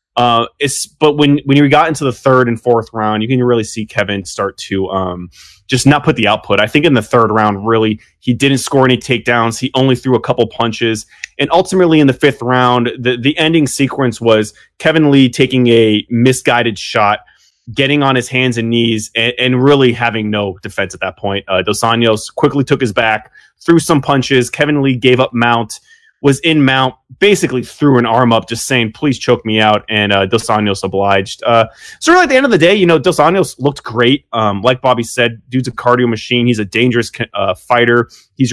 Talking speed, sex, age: 215 wpm, male, 20-39